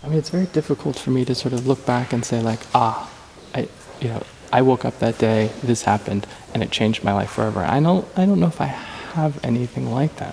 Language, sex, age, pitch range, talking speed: Portuguese, male, 20-39, 110-130 Hz, 250 wpm